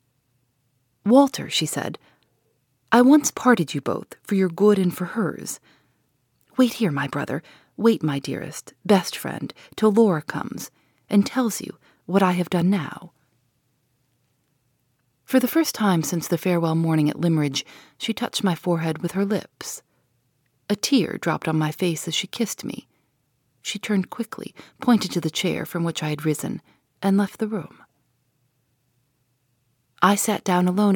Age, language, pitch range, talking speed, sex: 40-59, English, 140-205 Hz, 155 wpm, female